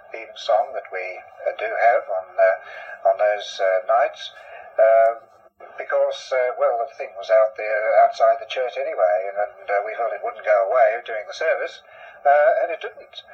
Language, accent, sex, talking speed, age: English, British, male, 190 wpm, 50-69